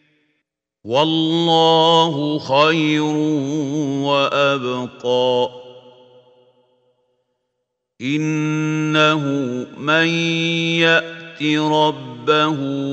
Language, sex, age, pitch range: Arabic, male, 50-69, 125-150 Hz